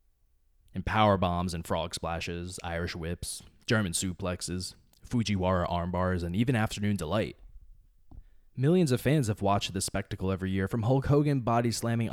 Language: English